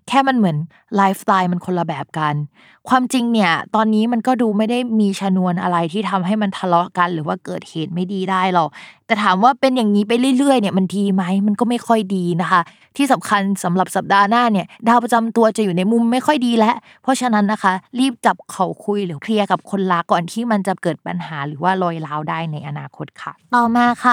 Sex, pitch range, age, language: female, 180-240 Hz, 20-39, Thai